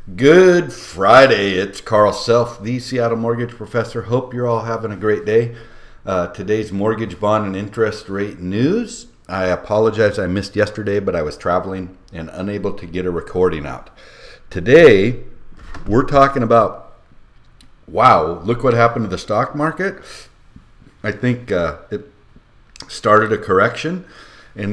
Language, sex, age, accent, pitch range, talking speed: English, male, 50-69, American, 95-115 Hz, 145 wpm